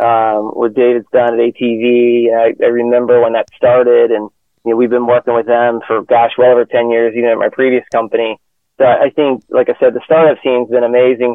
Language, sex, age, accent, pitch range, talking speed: English, male, 30-49, American, 115-130 Hz, 225 wpm